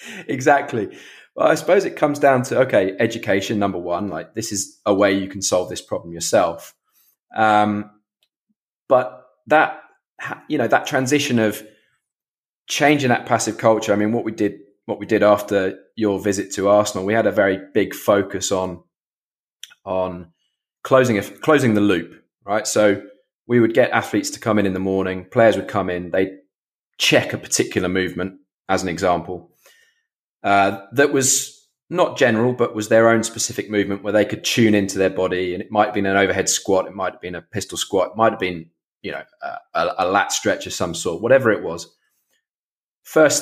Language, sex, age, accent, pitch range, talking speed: English, male, 20-39, British, 95-115 Hz, 185 wpm